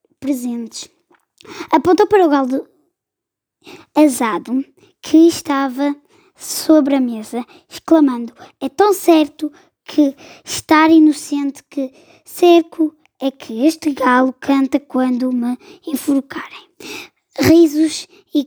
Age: 20-39